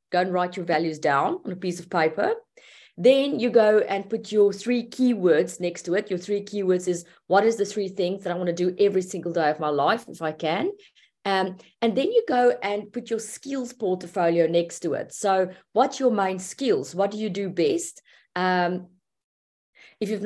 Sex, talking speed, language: female, 210 wpm, English